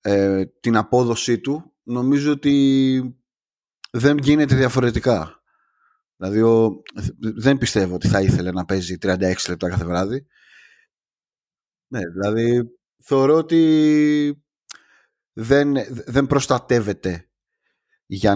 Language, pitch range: Greek, 100-140 Hz